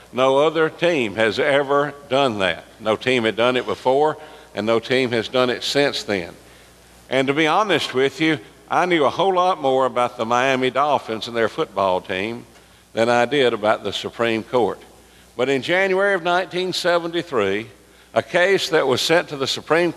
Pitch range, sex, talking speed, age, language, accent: 115-155 Hz, male, 185 wpm, 50-69, English, American